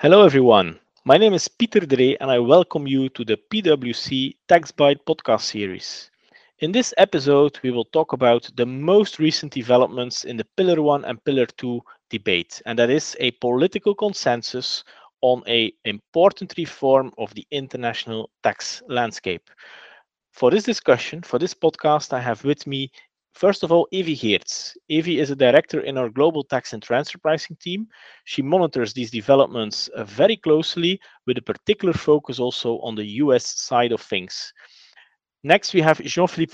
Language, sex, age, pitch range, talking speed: English, male, 40-59, 125-165 Hz, 165 wpm